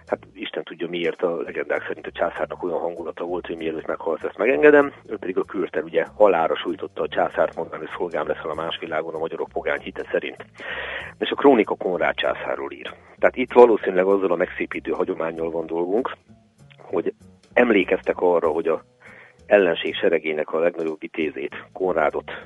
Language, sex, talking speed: Hungarian, male, 175 wpm